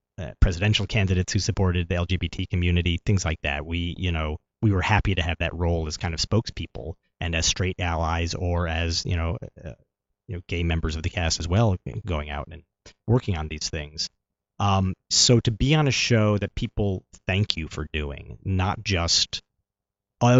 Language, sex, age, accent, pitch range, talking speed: English, male, 30-49, American, 85-100 Hz, 195 wpm